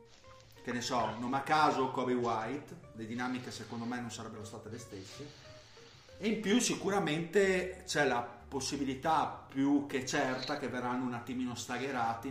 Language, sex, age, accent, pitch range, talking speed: Italian, male, 40-59, native, 115-145 Hz, 155 wpm